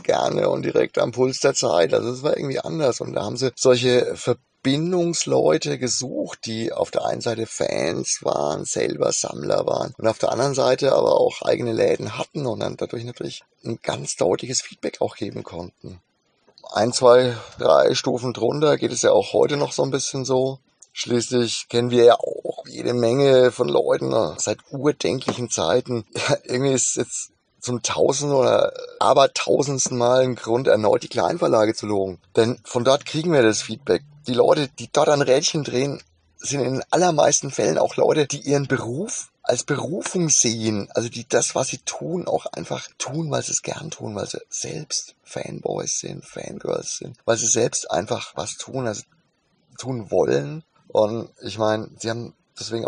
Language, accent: German, German